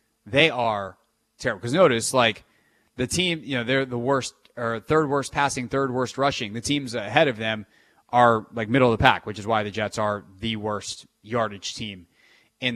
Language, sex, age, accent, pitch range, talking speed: English, male, 30-49, American, 115-140 Hz, 190 wpm